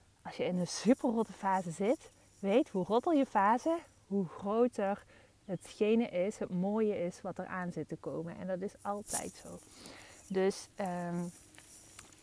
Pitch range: 170-225 Hz